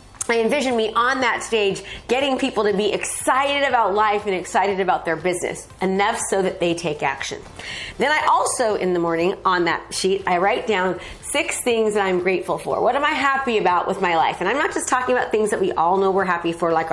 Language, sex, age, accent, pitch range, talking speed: English, female, 30-49, American, 185-230 Hz, 230 wpm